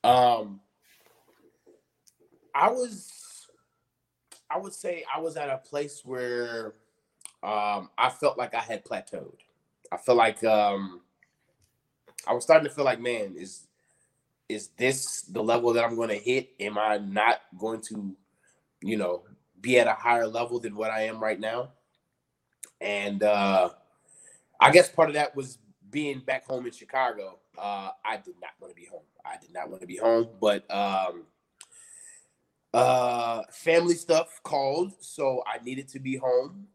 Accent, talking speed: American, 160 wpm